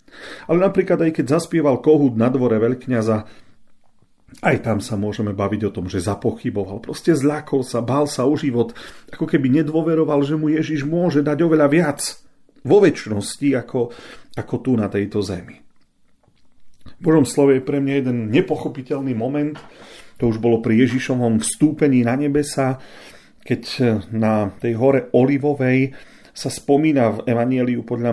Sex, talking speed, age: male, 150 wpm, 40-59